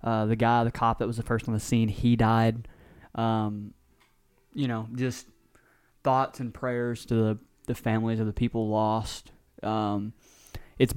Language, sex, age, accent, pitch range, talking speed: English, male, 20-39, American, 105-120 Hz, 170 wpm